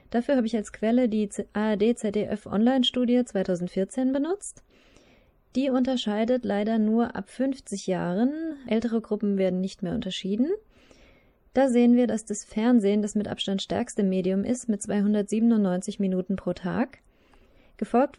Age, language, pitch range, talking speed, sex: 20-39, German, 195-240 Hz, 130 wpm, female